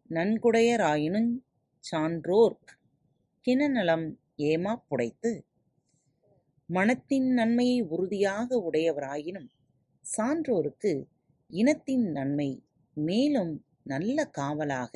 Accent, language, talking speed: native, Tamil, 55 wpm